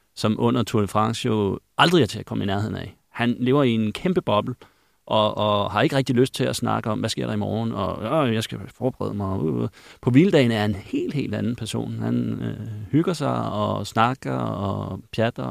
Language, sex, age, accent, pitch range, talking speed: Danish, male, 30-49, native, 105-125 Hz, 220 wpm